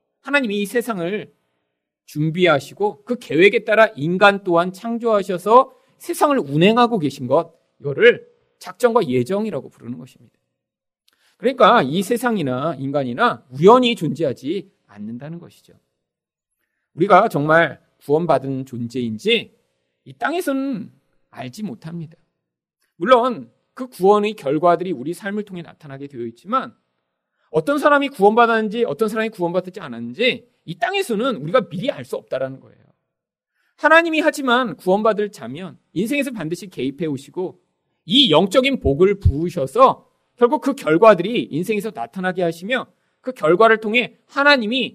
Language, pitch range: Korean, 150-240 Hz